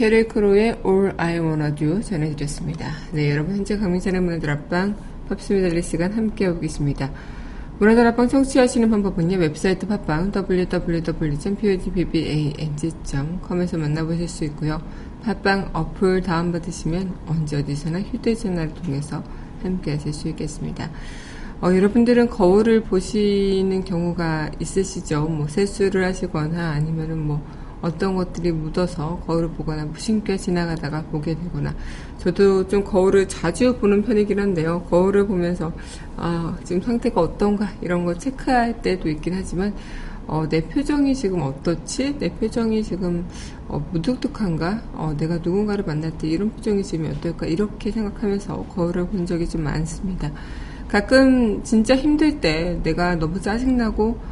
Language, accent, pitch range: Korean, native, 160-205 Hz